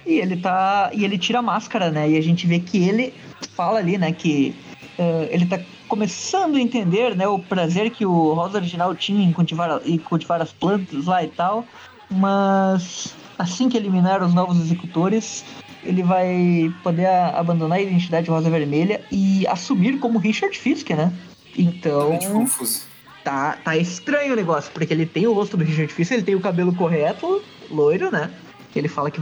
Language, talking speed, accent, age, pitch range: Portuguese, 185 wpm, Brazilian, 20-39, 165-225 Hz